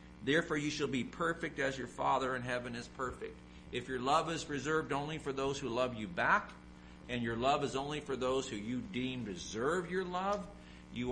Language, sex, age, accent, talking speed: English, male, 50-69, American, 205 wpm